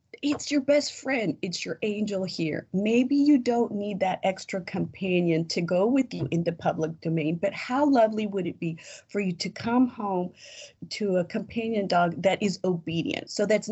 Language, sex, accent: English, female, American